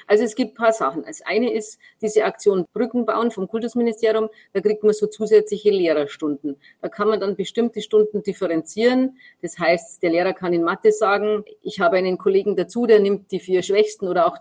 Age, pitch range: 30-49, 185-220 Hz